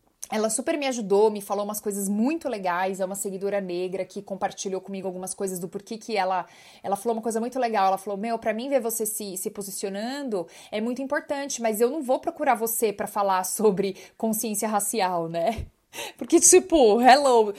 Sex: female